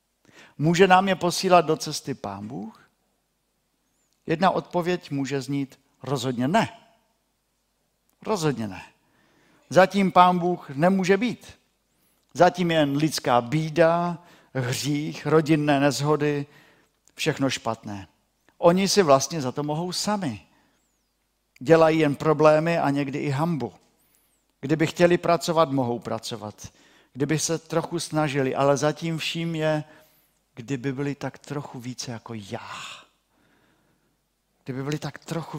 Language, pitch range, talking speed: Czech, 125-165 Hz, 115 wpm